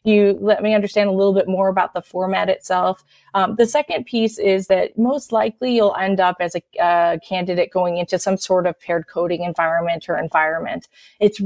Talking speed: 200 wpm